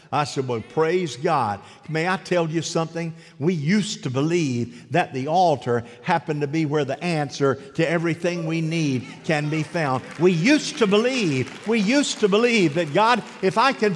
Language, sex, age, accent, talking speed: English, male, 50-69, American, 185 wpm